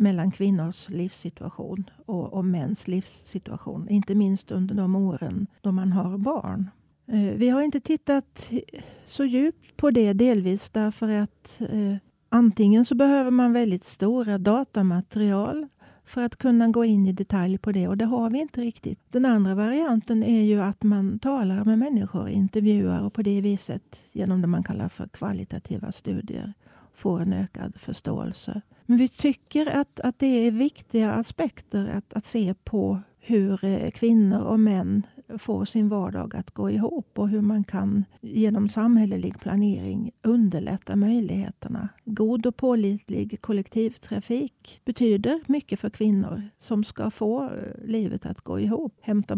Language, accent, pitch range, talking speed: Swedish, native, 195-235 Hz, 150 wpm